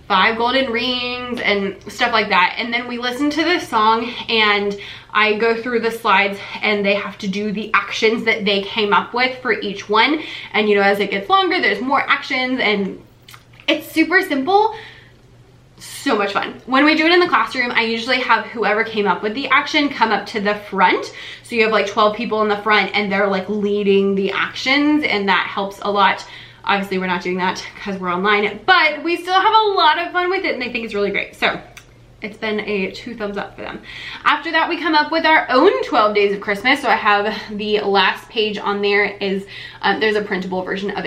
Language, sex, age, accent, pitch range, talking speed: English, female, 20-39, American, 200-250 Hz, 225 wpm